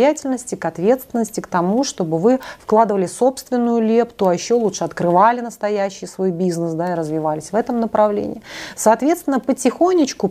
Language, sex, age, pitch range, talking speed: Russian, female, 30-49, 185-260 Hz, 140 wpm